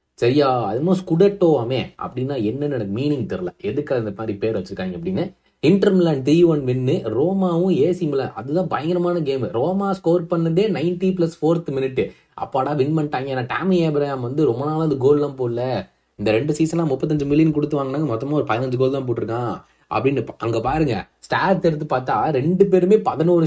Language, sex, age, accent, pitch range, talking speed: Tamil, male, 20-39, native, 135-185 Hz, 140 wpm